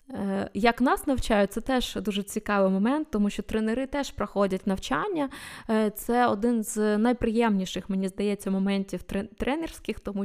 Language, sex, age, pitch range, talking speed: Ukrainian, female, 20-39, 195-235 Hz, 135 wpm